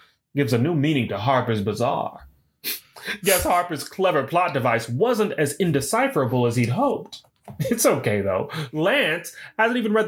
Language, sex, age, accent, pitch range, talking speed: English, male, 30-49, American, 120-205 Hz, 150 wpm